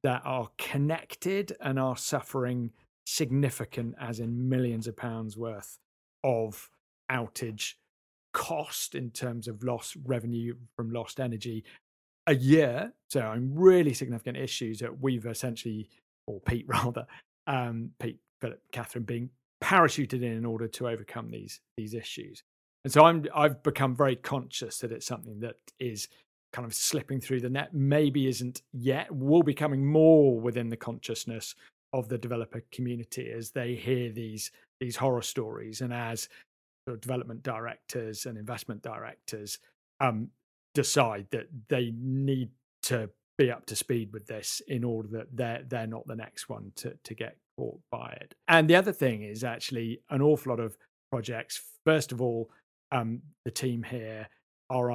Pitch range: 115-135 Hz